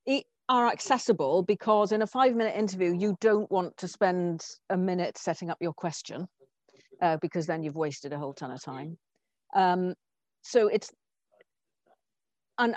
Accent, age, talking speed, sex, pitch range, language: British, 50-69, 155 wpm, female, 160-205 Hz, English